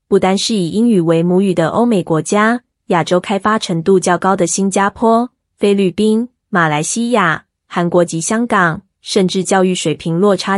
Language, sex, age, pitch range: Chinese, female, 20-39, 175-210 Hz